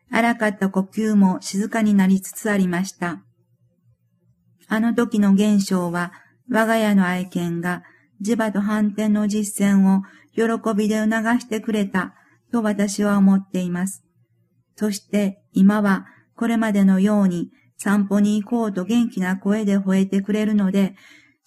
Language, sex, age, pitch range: Japanese, female, 50-69, 190-220 Hz